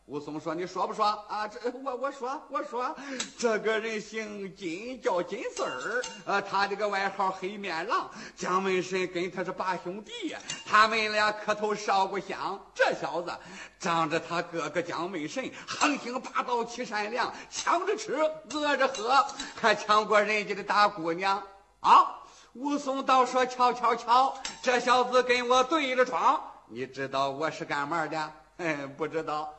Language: Chinese